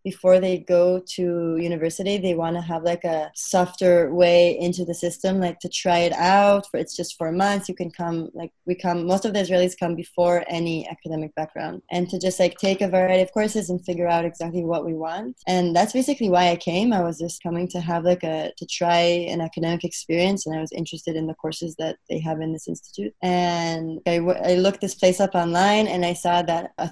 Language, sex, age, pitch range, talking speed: English, female, 20-39, 165-180 Hz, 225 wpm